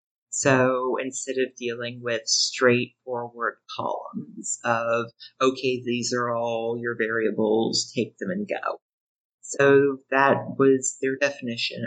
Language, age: English, 30-49